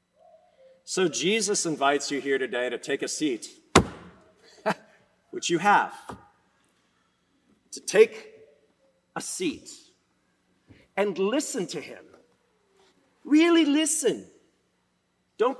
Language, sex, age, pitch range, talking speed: English, male, 40-59, 210-315 Hz, 90 wpm